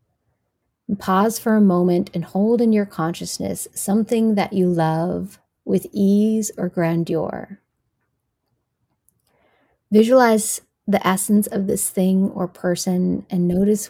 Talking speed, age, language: 115 wpm, 30-49, English